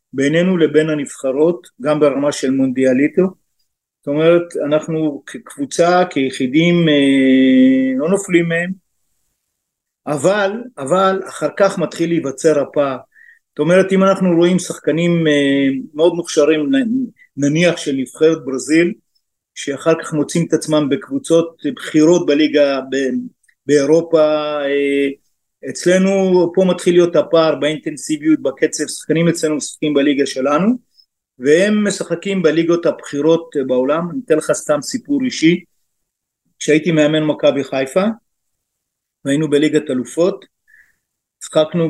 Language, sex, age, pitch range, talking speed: Hebrew, male, 50-69, 145-175 Hz, 110 wpm